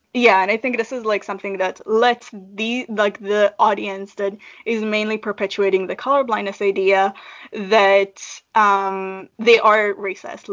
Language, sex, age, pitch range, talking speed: English, female, 10-29, 195-230 Hz, 150 wpm